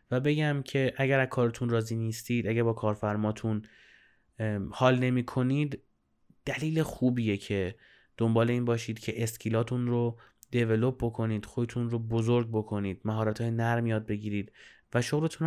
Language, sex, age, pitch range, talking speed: Persian, male, 20-39, 110-130 Hz, 130 wpm